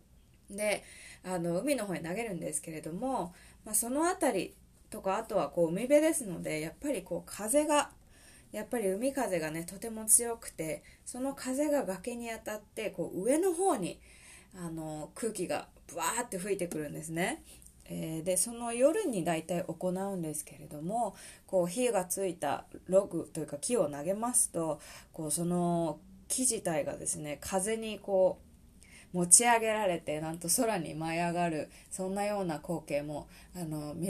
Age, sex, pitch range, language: 20-39, female, 160-210 Hz, Japanese